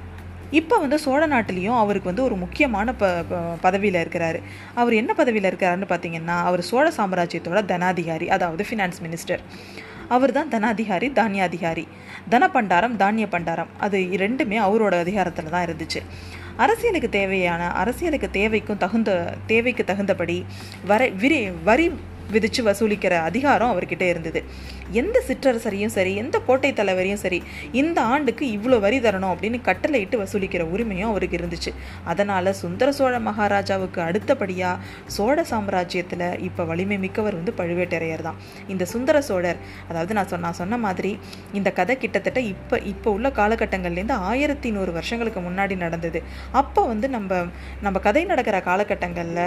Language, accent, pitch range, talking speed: Tamil, native, 180-235 Hz, 130 wpm